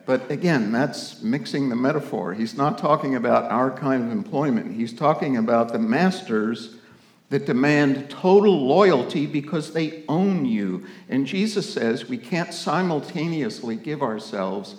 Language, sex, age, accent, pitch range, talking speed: English, male, 60-79, American, 120-195 Hz, 140 wpm